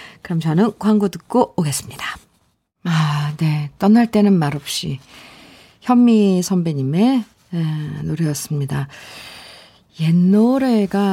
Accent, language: native, Korean